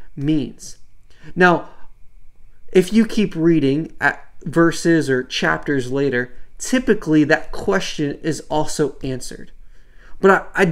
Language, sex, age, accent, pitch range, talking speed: English, male, 30-49, American, 130-165 Hz, 110 wpm